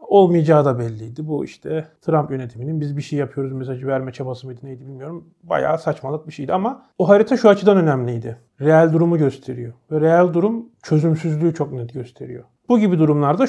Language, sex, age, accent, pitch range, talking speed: Turkish, male, 40-59, native, 135-175 Hz, 180 wpm